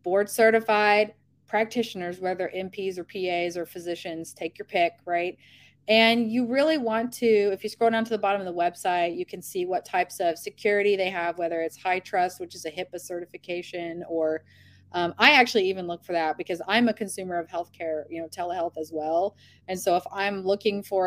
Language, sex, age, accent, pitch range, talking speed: English, female, 30-49, American, 175-215 Hz, 200 wpm